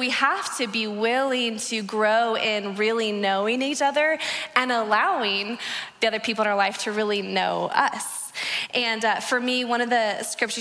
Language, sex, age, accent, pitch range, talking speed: English, female, 20-39, American, 215-260 Hz, 180 wpm